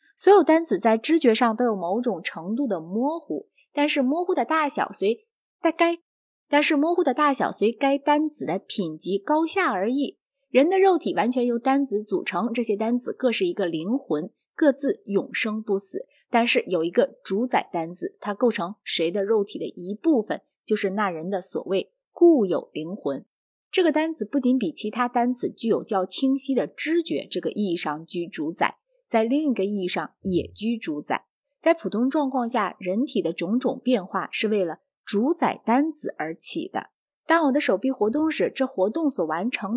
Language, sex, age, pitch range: Chinese, female, 20-39, 200-300 Hz